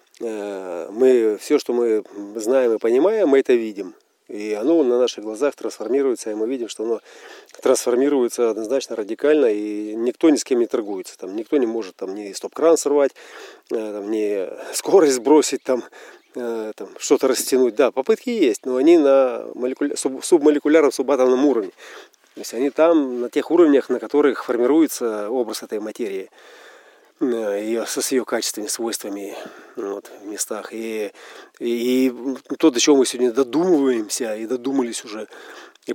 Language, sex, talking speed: Russian, male, 150 wpm